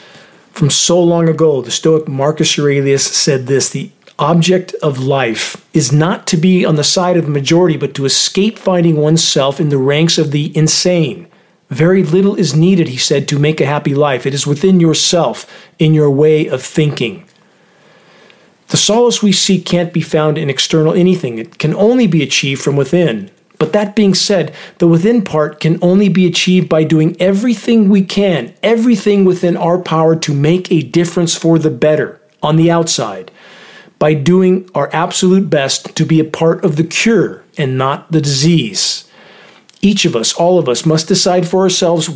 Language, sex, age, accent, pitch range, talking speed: English, male, 40-59, American, 150-185 Hz, 180 wpm